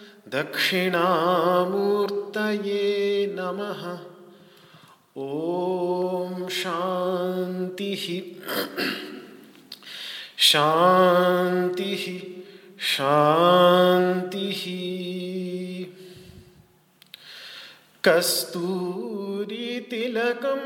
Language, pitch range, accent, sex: Hindi, 180-245 Hz, native, male